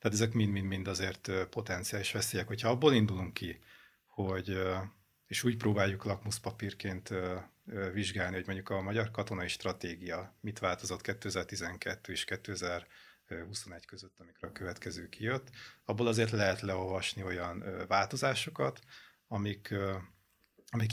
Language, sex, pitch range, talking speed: Hungarian, male, 90-105 Hz, 115 wpm